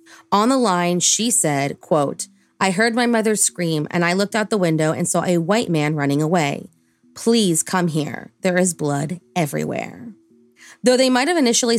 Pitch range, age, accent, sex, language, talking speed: 165-210 Hz, 30-49, American, female, English, 180 wpm